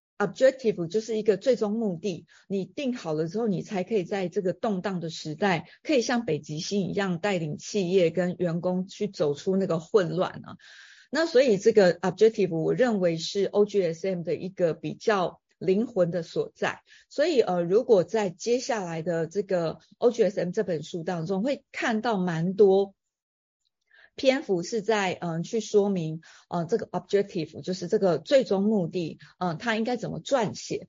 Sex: female